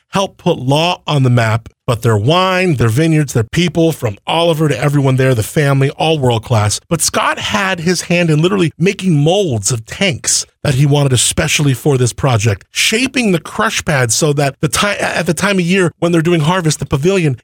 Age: 40-59